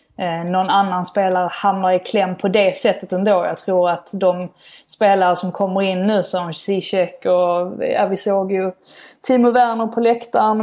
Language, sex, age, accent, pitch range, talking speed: Swedish, female, 20-39, native, 180-200 Hz, 170 wpm